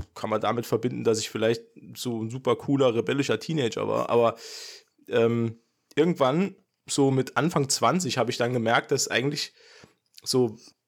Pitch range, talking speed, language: 120-155 Hz, 155 wpm, German